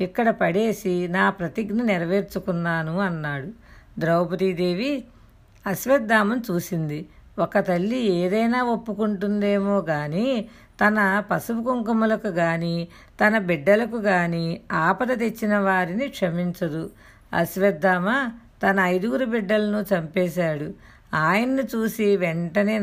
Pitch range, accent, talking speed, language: 180-220 Hz, native, 85 wpm, Telugu